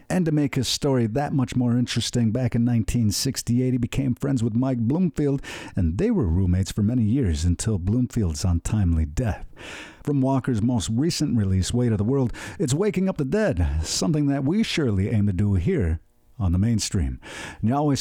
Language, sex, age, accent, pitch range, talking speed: English, male, 50-69, American, 100-140 Hz, 190 wpm